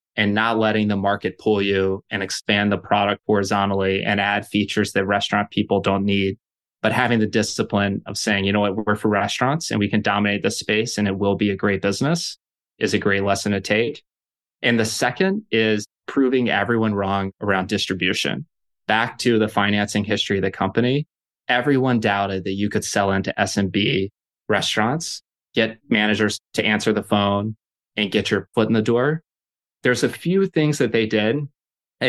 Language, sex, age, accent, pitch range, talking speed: English, male, 20-39, American, 100-110 Hz, 185 wpm